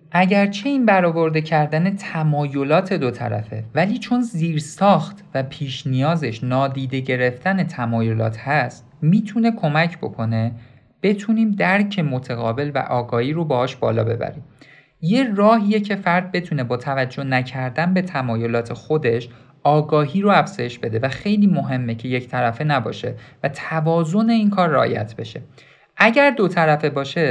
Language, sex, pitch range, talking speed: Persian, male, 130-190 Hz, 135 wpm